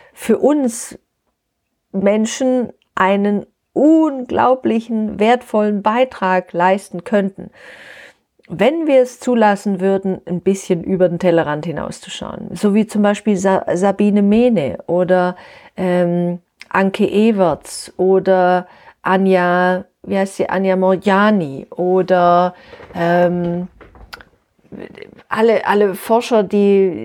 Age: 40-59